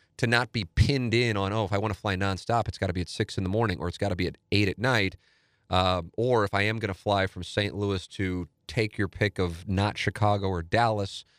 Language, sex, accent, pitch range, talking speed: English, male, American, 95-115 Hz, 270 wpm